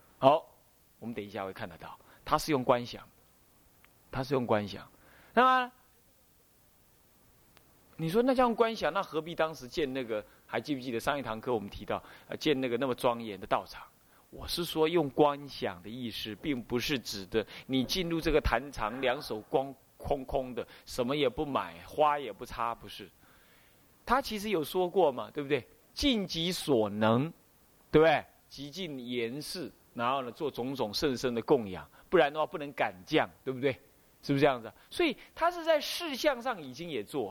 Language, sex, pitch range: Chinese, male, 115-195 Hz